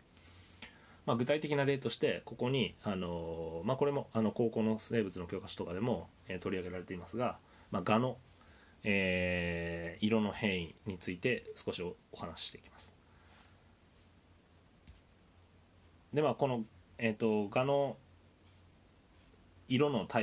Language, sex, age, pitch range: Japanese, male, 30-49, 85-115 Hz